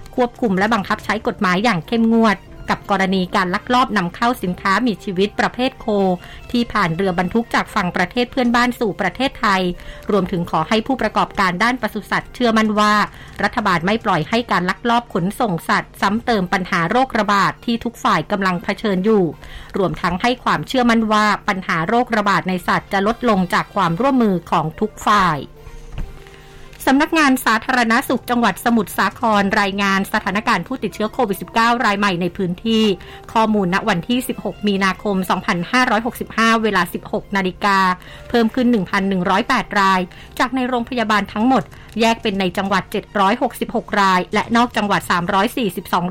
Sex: female